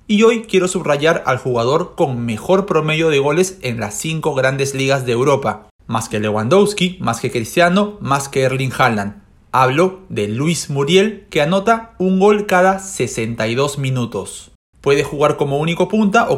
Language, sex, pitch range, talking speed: Spanish, male, 125-180 Hz, 165 wpm